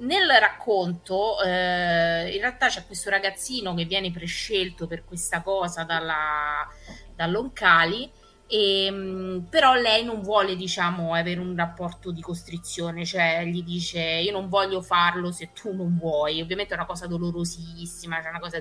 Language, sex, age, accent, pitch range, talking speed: Italian, female, 30-49, native, 165-195 Hz, 145 wpm